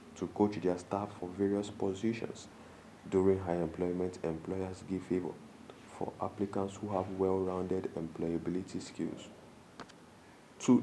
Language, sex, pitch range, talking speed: English, male, 90-110 Hz, 115 wpm